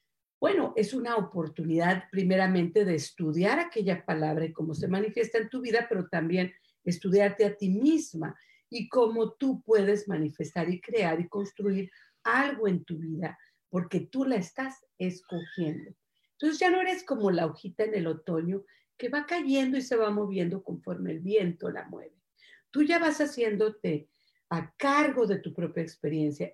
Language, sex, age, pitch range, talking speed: Spanish, female, 50-69, 170-225 Hz, 165 wpm